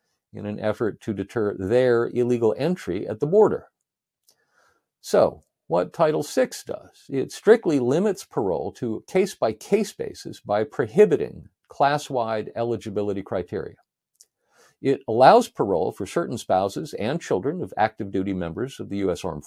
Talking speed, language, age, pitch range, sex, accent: 140 wpm, English, 50-69, 100-140 Hz, male, American